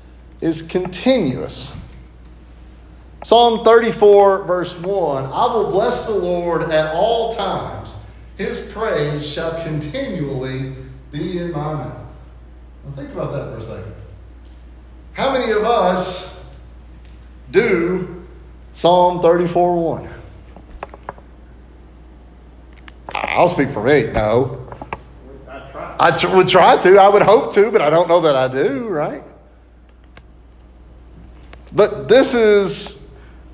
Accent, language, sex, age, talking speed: American, English, male, 40-59, 105 wpm